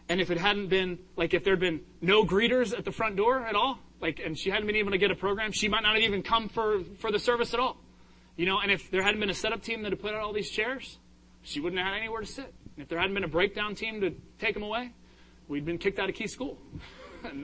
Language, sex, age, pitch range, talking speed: English, male, 30-49, 155-210 Hz, 285 wpm